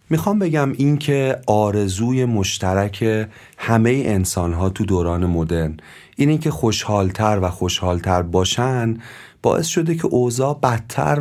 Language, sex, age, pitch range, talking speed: Persian, male, 30-49, 95-130 Hz, 110 wpm